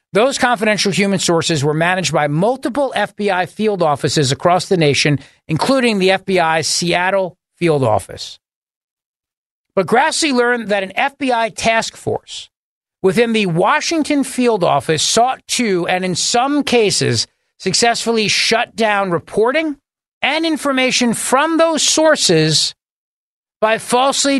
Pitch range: 165-240 Hz